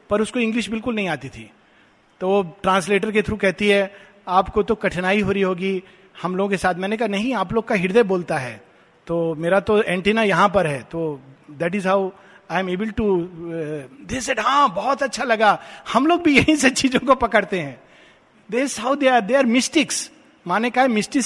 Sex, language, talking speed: male, Hindi, 155 wpm